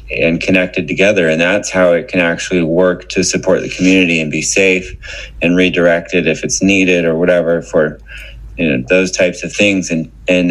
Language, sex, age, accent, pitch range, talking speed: English, male, 30-49, American, 80-95 Hz, 190 wpm